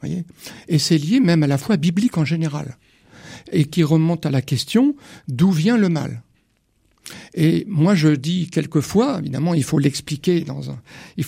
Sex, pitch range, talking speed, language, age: male, 145-185 Hz, 175 wpm, French, 60-79